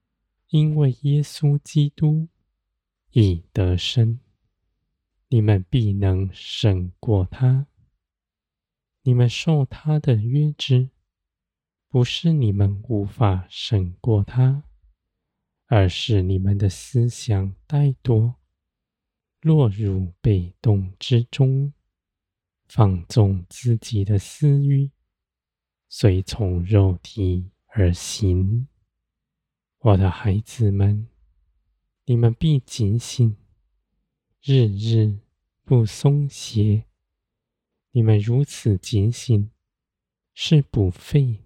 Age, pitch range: 20-39, 95-125 Hz